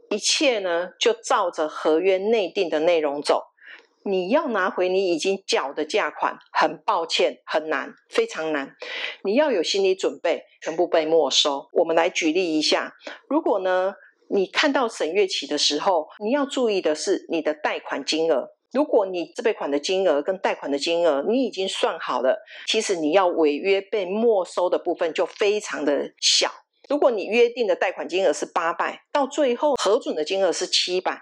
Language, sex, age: Chinese, female, 40-59